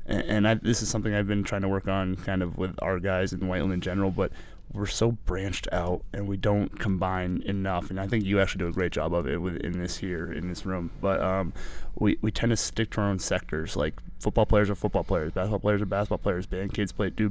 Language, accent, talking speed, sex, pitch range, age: English, American, 255 wpm, male, 95-110 Hz, 20-39